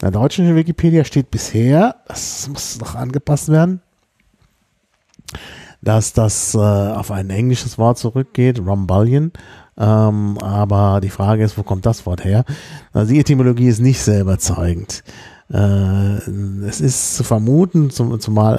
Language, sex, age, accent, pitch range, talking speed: German, male, 40-59, German, 100-125 Hz, 140 wpm